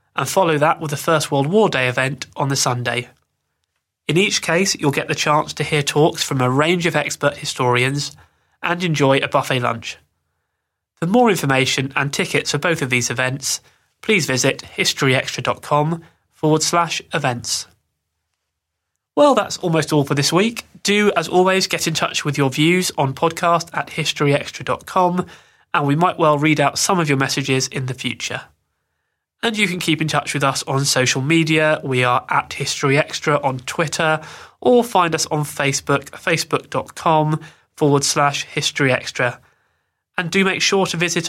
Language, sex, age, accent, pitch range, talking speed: English, male, 20-39, British, 135-170 Hz, 170 wpm